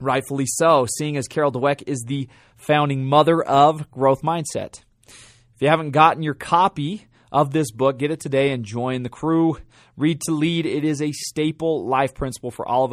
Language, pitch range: English, 120-155 Hz